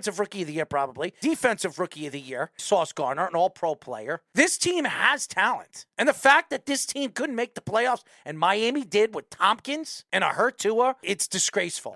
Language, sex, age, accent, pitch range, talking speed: English, male, 40-59, American, 175-235 Hz, 210 wpm